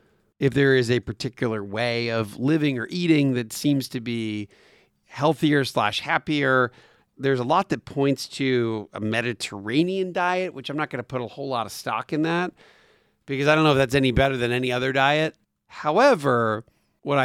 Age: 40-59